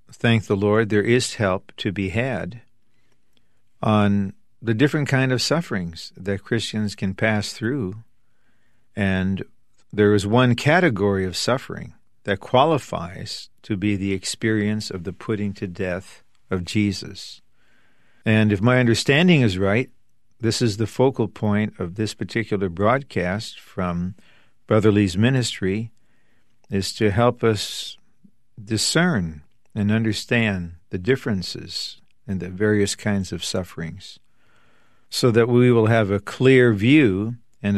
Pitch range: 95-120 Hz